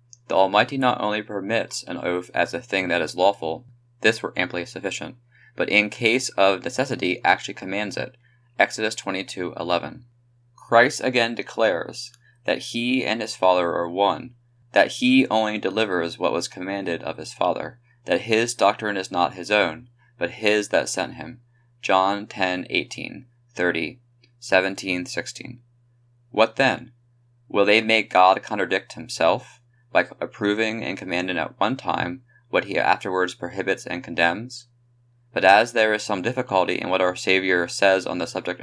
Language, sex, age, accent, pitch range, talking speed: English, male, 20-39, American, 95-120 Hz, 155 wpm